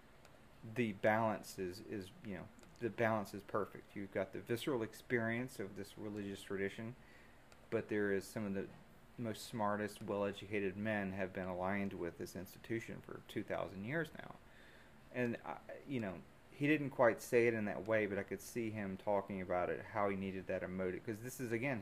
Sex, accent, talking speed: male, American, 185 wpm